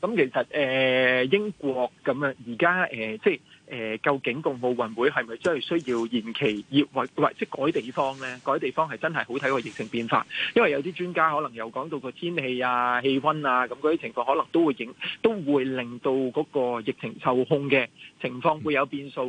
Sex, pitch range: male, 125-165 Hz